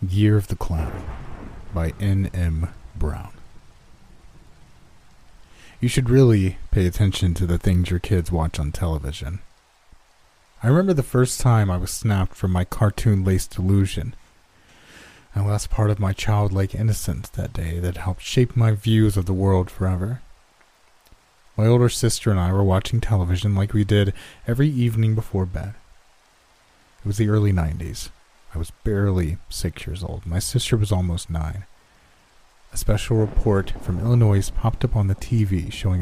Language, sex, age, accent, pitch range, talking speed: English, male, 30-49, American, 90-110 Hz, 155 wpm